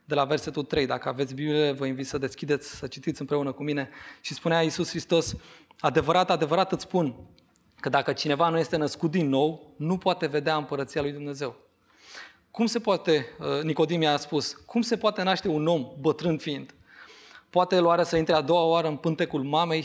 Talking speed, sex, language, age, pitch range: 190 wpm, male, Romanian, 20-39, 140-165 Hz